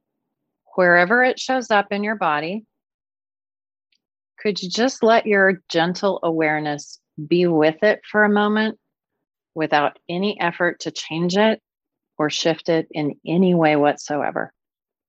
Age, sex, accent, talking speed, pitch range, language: 30-49, female, American, 130 wpm, 155-200 Hz, English